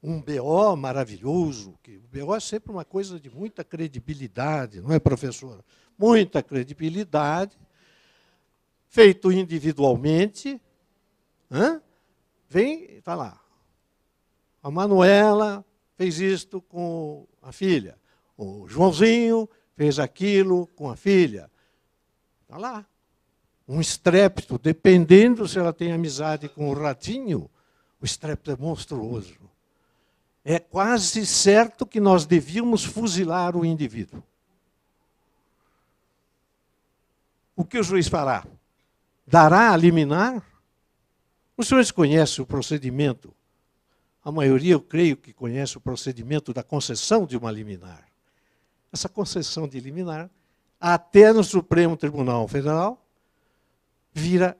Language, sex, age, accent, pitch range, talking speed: Portuguese, male, 60-79, Brazilian, 135-195 Hz, 110 wpm